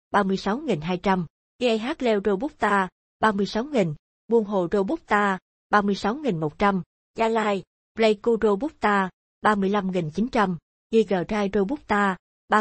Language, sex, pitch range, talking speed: Vietnamese, female, 185-220 Hz, 135 wpm